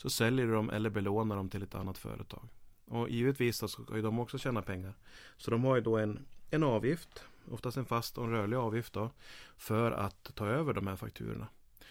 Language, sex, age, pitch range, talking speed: Swedish, male, 30-49, 100-120 Hz, 210 wpm